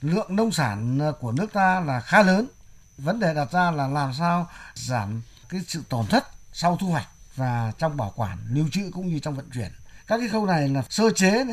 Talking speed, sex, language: 220 wpm, male, Vietnamese